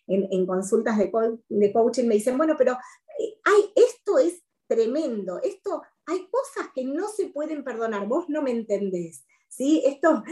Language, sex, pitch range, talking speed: English, female, 195-255 Hz, 155 wpm